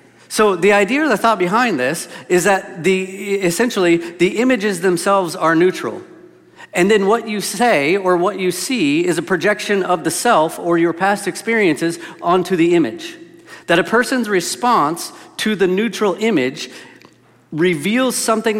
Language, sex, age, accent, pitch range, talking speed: English, male, 40-59, American, 170-215 Hz, 160 wpm